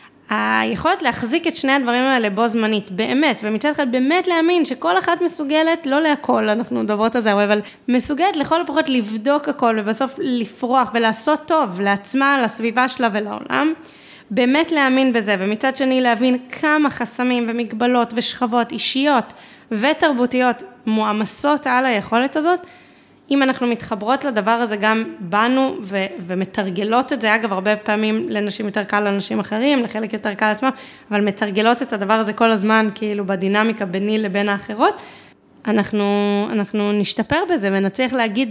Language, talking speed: Hebrew, 145 wpm